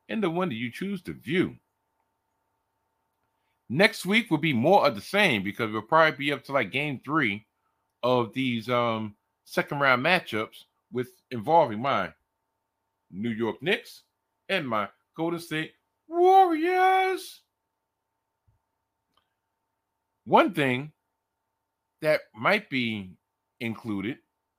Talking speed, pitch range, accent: 115 wpm, 110-160 Hz, American